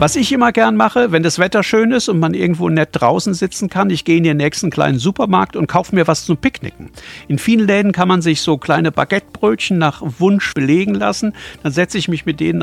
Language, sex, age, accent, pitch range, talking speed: German, male, 60-79, German, 145-195 Hz, 235 wpm